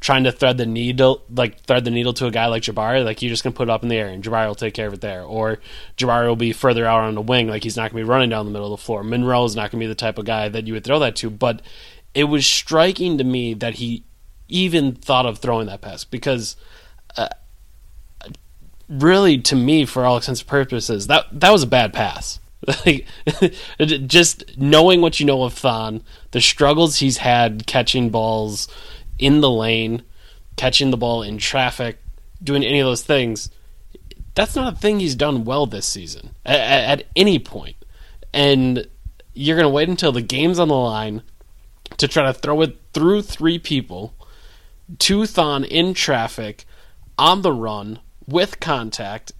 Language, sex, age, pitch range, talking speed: English, male, 20-39, 110-145 Hz, 205 wpm